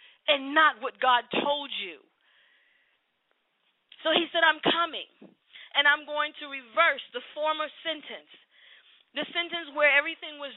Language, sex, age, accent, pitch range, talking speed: English, female, 40-59, American, 270-320 Hz, 135 wpm